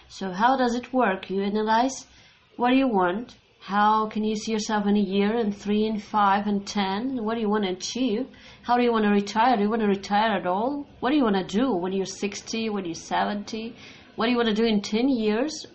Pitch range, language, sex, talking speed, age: 195-240 Hz, English, female, 250 wpm, 30-49